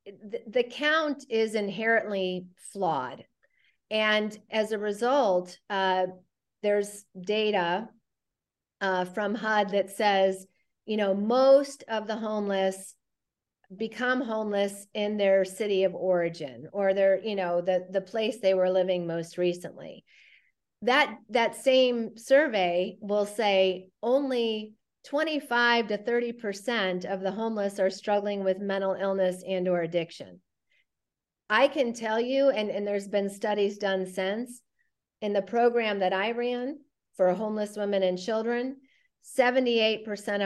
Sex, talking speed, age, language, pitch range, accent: female, 130 wpm, 40-59, English, 185-225 Hz, American